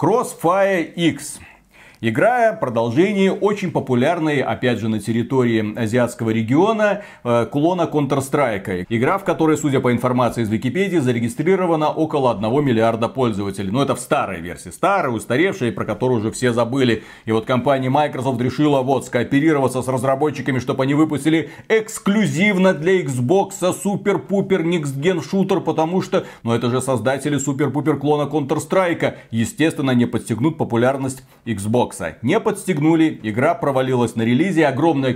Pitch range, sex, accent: 120-160 Hz, male, native